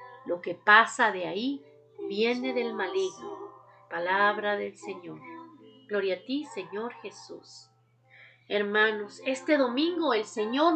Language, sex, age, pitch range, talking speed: Spanish, female, 40-59, 215-305 Hz, 115 wpm